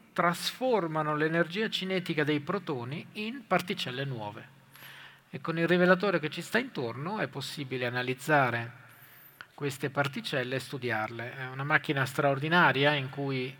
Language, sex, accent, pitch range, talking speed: Italian, male, native, 135-170 Hz, 130 wpm